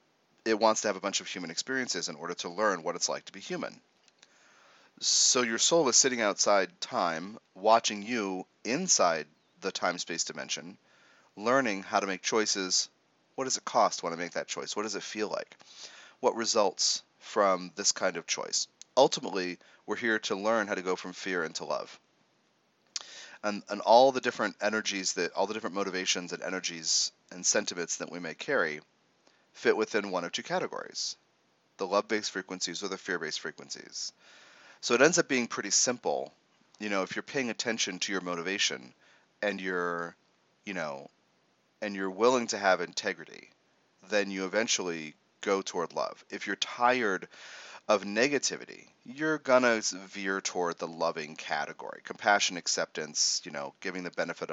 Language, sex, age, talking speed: English, male, 30-49, 170 wpm